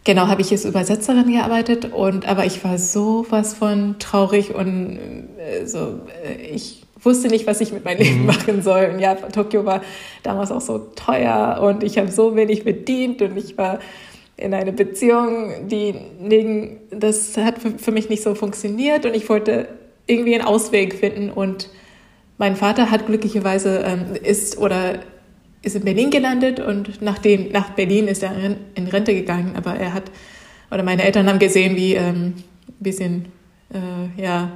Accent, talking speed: German, 170 wpm